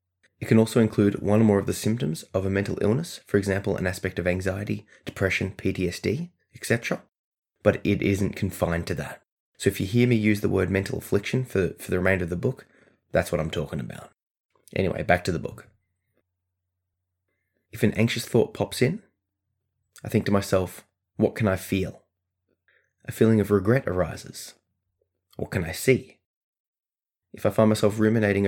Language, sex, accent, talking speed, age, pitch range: English, male, Australian, 175 wpm, 20-39, 90-105 Hz